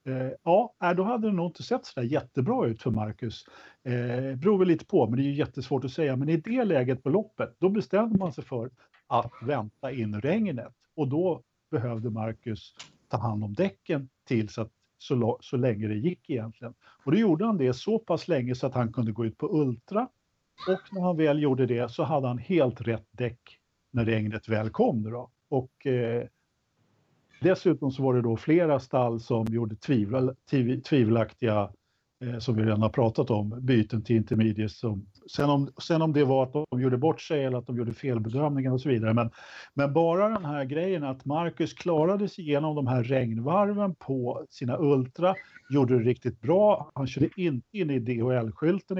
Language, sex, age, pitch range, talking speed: Swedish, male, 50-69, 120-170 Hz, 190 wpm